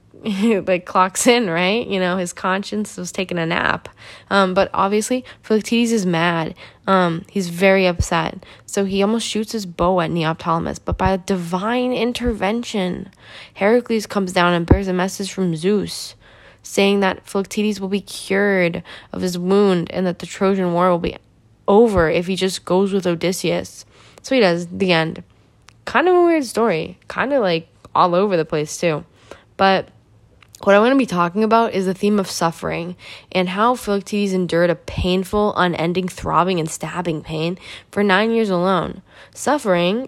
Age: 10-29